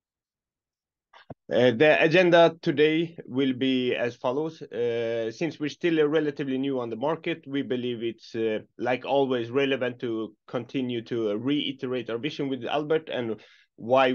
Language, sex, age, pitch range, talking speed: Swedish, male, 20-39, 115-145 Hz, 150 wpm